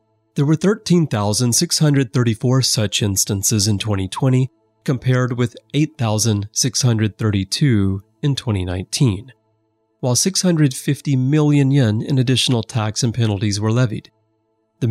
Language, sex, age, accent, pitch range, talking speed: English, male, 30-49, American, 105-135 Hz, 95 wpm